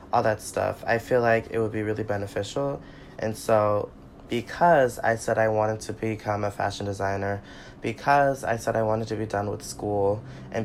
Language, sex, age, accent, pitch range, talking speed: English, male, 20-39, American, 100-120 Hz, 185 wpm